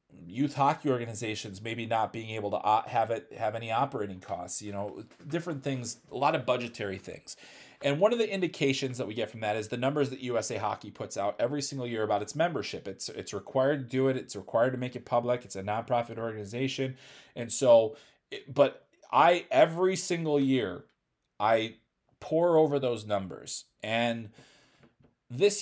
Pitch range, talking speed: 115-145 Hz, 185 wpm